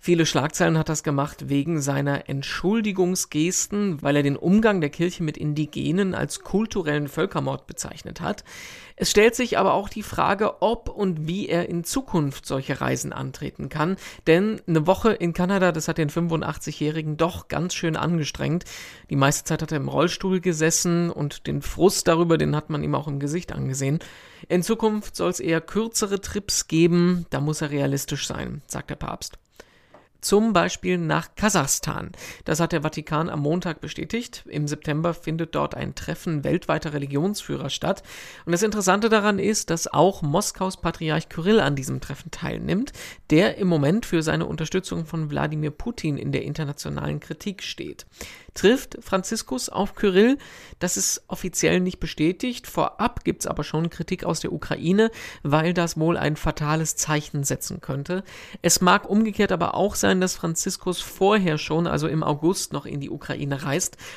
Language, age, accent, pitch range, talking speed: German, 50-69, German, 150-185 Hz, 165 wpm